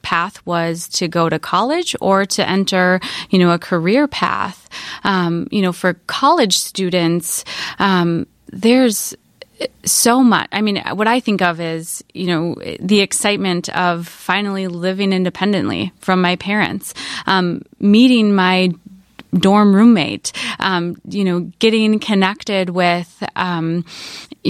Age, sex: 20-39, female